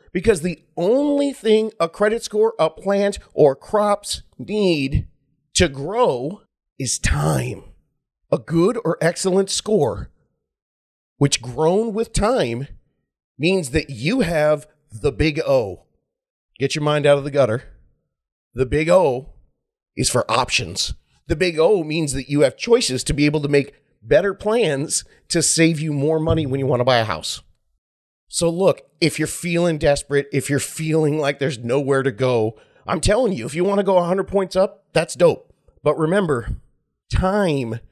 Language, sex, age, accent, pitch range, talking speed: English, male, 40-59, American, 140-190 Hz, 160 wpm